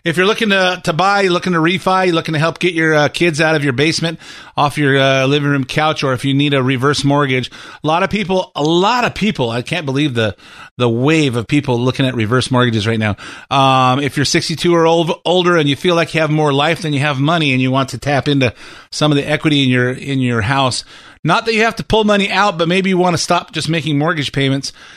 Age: 30-49